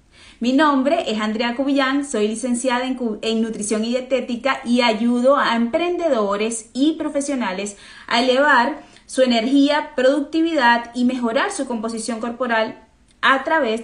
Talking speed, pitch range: 130 wpm, 210-270 Hz